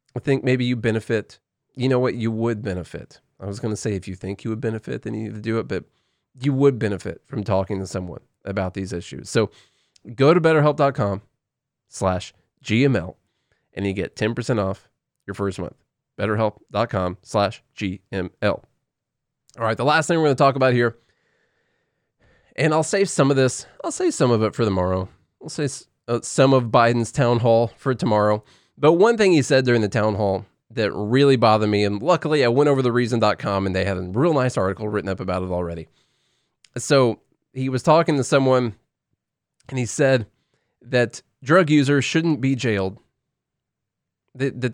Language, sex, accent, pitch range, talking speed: English, male, American, 105-140 Hz, 185 wpm